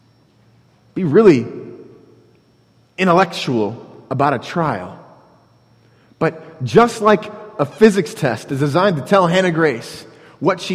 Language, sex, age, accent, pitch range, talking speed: English, male, 30-49, American, 130-175 Hz, 105 wpm